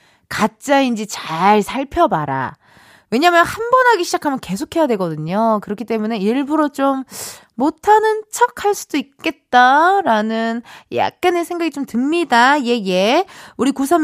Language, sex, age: Korean, female, 20-39